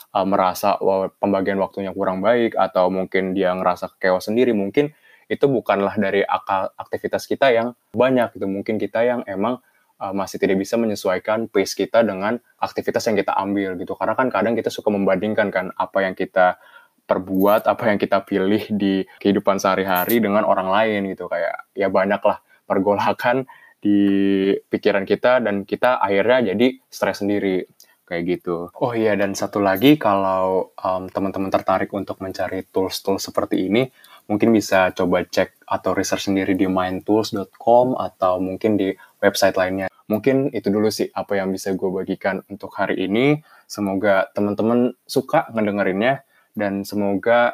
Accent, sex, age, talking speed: native, male, 20-39, 155 wpm